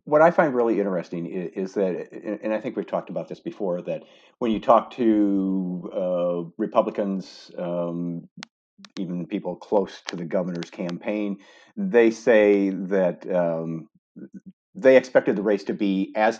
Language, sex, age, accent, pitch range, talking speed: English, male, 50-69, American, 85-100 Hz, 155 wpm